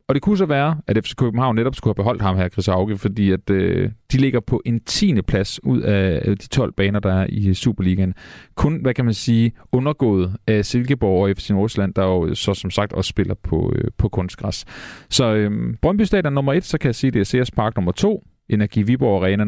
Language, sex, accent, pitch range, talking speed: Danish, male, native, 100-135 Hz, 220 wpm